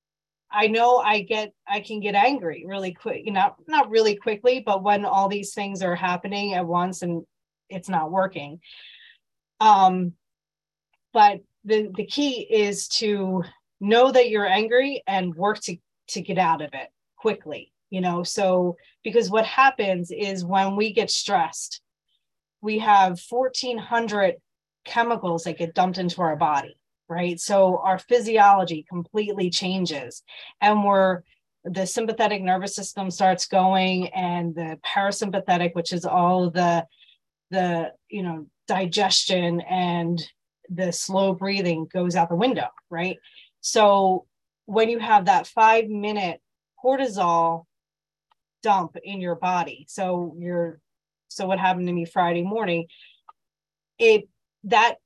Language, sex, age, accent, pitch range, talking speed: English, female, 30-49, American, 175-215 Hz, 135 wpm